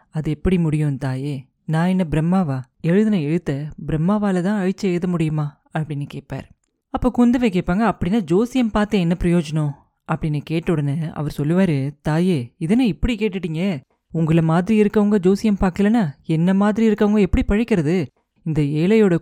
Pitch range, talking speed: 165-220 Hz, 135 wpm